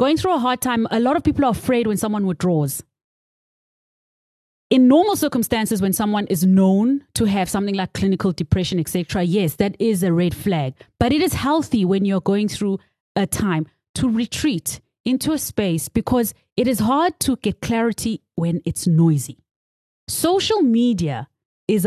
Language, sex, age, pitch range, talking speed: English, female, 30-49, 175-230 Hz, 170 wpm